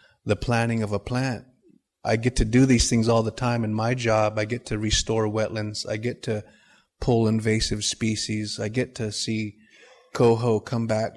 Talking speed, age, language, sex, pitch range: 190 wpm, 30-49, English, male, 110-120 Hz